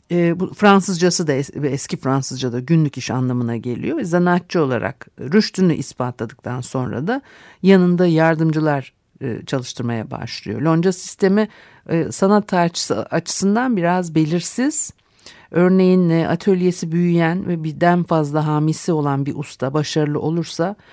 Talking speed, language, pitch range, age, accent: 125 wpm, Turkish, 135-180 Hz, 50-69, native